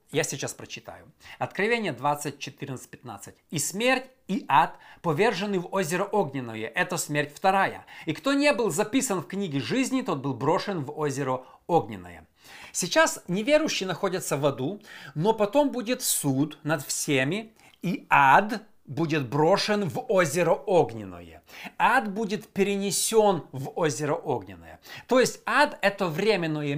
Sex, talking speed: male, 135 wpm